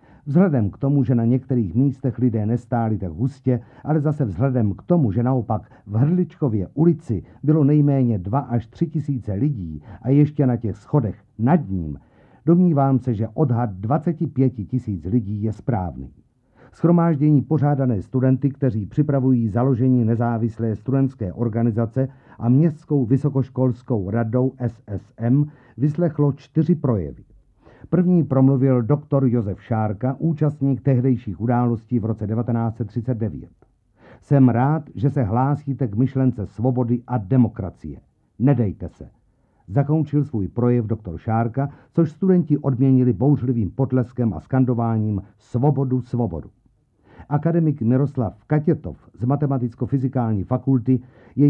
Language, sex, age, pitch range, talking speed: Czech, male, 50-69, 115-140 Hz, 120 wpm